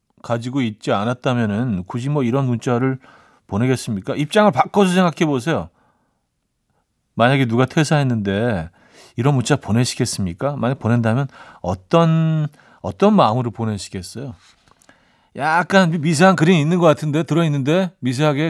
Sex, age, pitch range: male, 40-59, 115-155 Hz